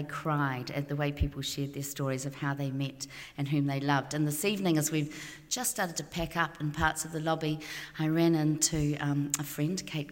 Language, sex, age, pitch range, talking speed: English, female, 40-59, 150-195 Hz, 225 wpm